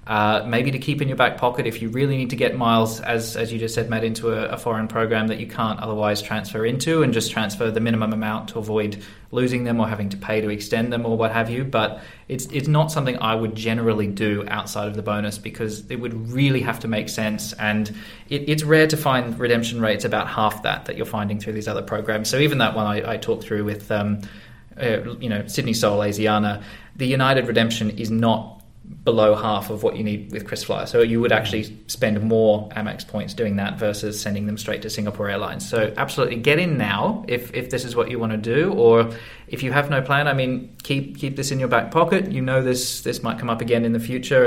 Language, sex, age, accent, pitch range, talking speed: English, male, 20-39, Australian, 110-125 Hz, 240 wpm